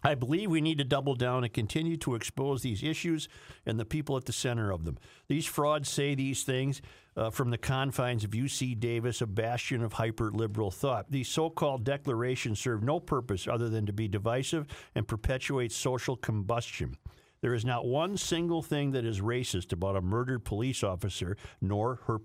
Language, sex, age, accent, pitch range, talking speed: English, male, 50-69, American, 115-145 Hz, 185 wpm